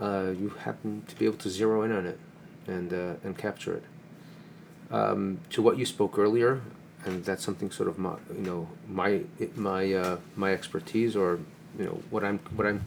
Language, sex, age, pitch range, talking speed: English, male, 40-59, 95-120 Hz, 195 wpm